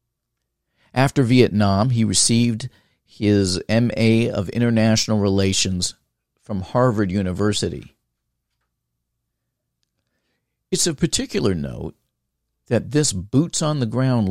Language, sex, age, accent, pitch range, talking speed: English, male, 50-69, American, 100-130 Hz, 80 wpm